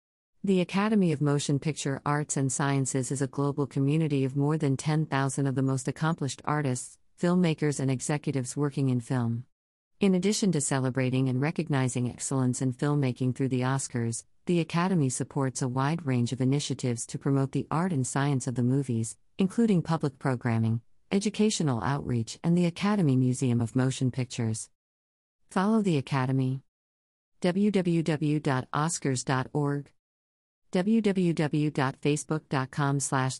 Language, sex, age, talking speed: English, female, 40-59, 135 wpm